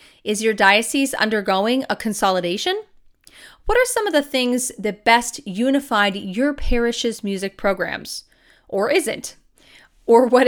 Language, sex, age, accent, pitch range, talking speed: English, female, 30-49, American, 200-260 Hz, 130 wpm